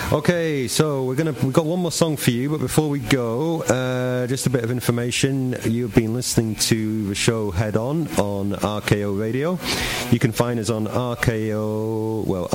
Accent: British